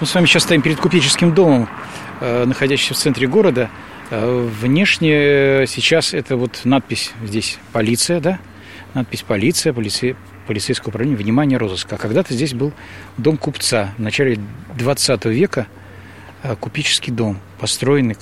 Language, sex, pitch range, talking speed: Russian, male, 105-130 Hz, 130 wpm